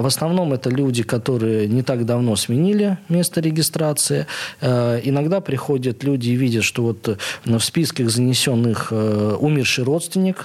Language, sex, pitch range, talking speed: Russian, male, 115-145 Hz, 130 wpm